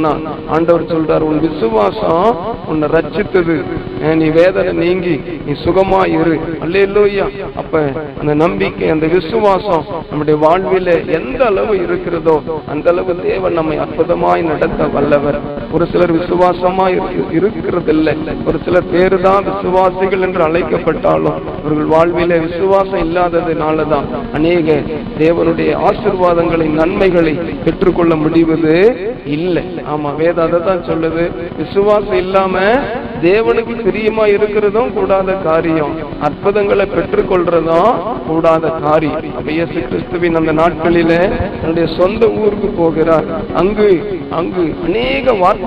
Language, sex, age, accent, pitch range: Tamil, male, 50-69, native, 160-190 Hz